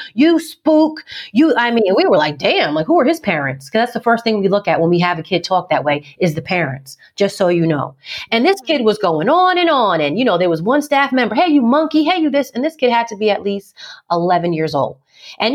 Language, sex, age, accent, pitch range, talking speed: English, female, 30-49, American, 185-265 Hz, 280 wpm